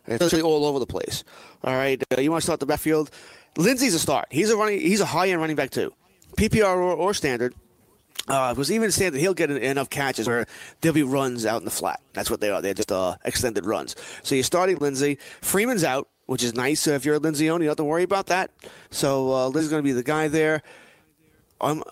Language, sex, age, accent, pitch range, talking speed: English, male, 30-49, American, 125-160 Hz, 250 wpm